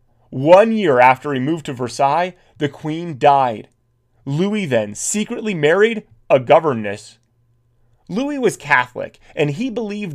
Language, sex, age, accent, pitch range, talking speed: English, male, 30-49, American, 120-205 Hz, 130 wpm